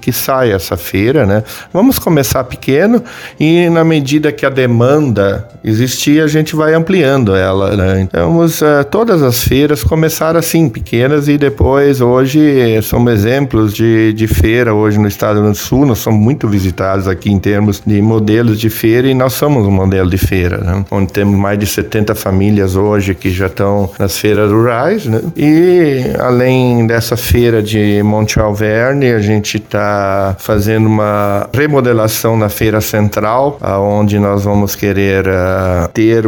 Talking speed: 165 wpm